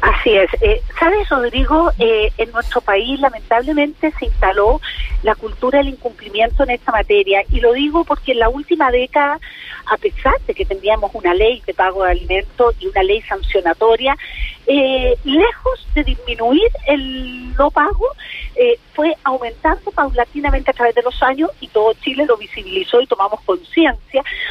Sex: female